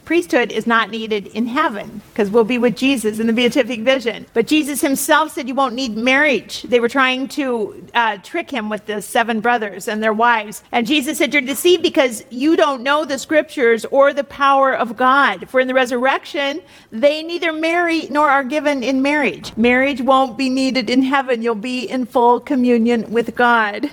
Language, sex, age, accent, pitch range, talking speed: English, female, 50-69, American, 230-275 Hz, 195 wpm